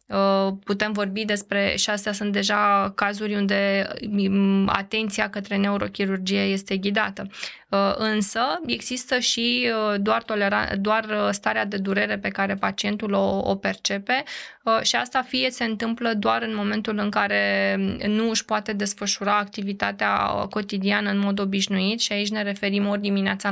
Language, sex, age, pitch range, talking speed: Romanian, female, 20-39, 195-215 Hz, 140 wpm